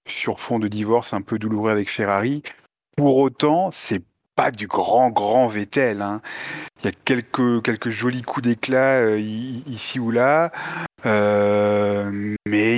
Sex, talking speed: male, 150 wpm